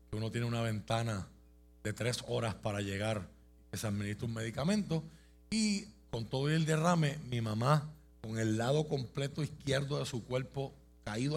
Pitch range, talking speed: 90-130 Hz, 160 wpm